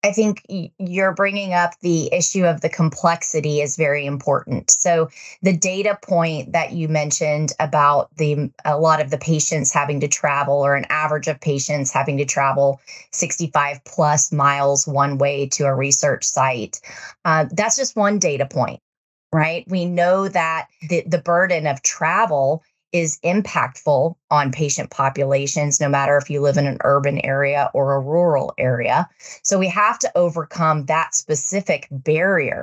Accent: American